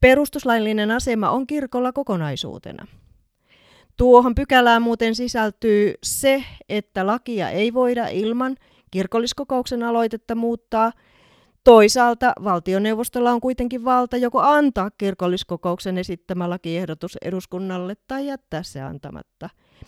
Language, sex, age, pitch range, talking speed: Finnish, female, 30-49, 175-230 Hz, 100 wpm